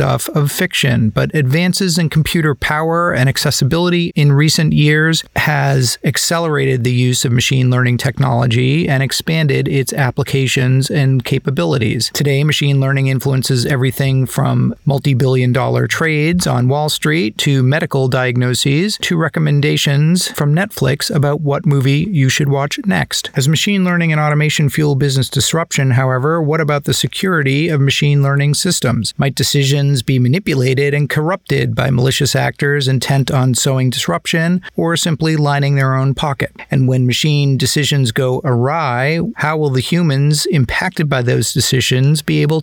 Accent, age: American, 40-59